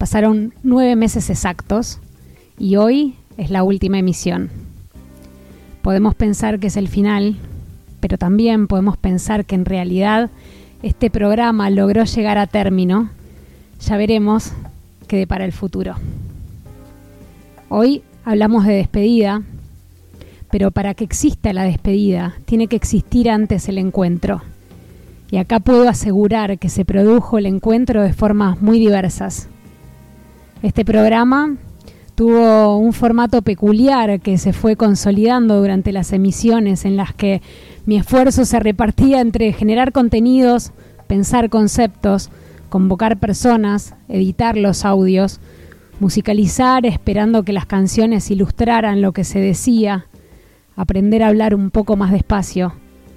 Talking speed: 125 wpm